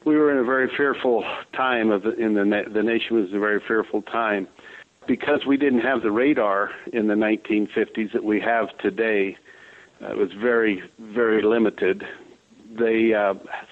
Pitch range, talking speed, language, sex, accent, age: 110-130 Hz, 175 wpm, English, male, American, 60-79